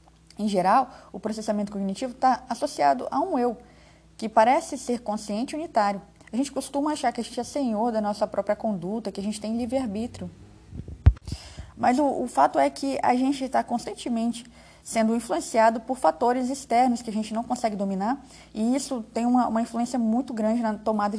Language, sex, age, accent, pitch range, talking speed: Portuguese, female, 20-39, Brazilian, 200-245 Hz, 180 wpm